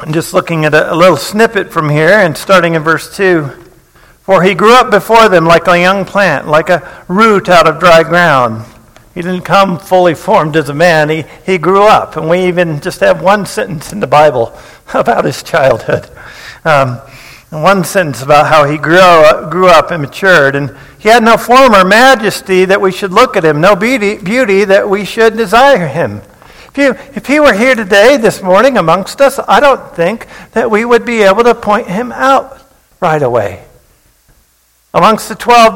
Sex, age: male, 50-69